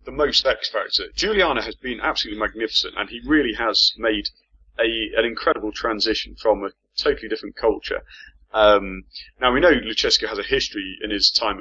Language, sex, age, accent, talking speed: English, male, 30-49, British, 170 wpm